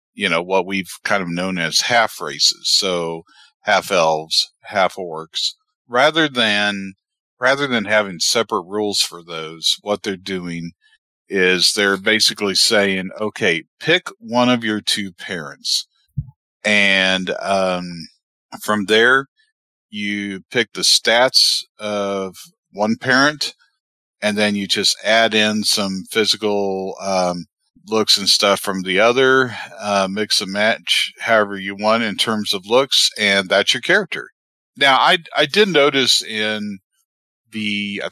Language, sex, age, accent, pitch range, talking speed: English, male, 50-69, American, 95-120 Hz, 135 wpm